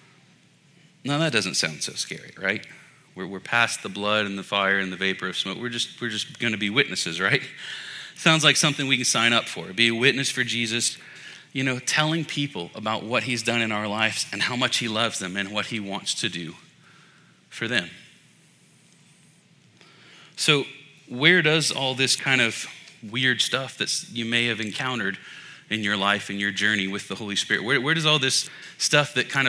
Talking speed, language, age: 200 wpm, English, 30-49